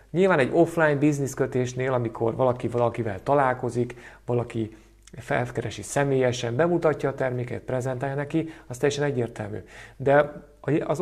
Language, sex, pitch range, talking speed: Hungarian, male, 115-145 Hz, 115 wpm